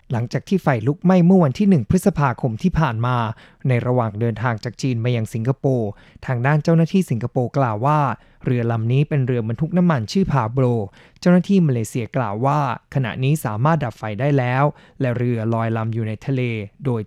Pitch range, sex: 120-150 Hz, male